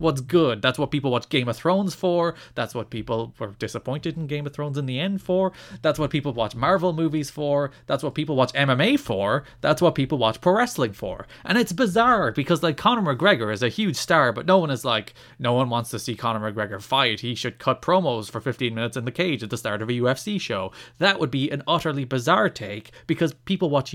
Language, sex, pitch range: English, male, 120-180 Hz